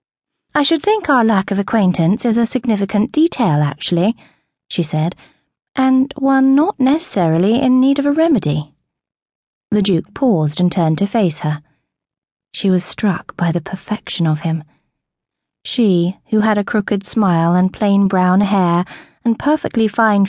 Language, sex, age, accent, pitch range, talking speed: English, female, 30-49, British, 175-230 Hz, 155 wpm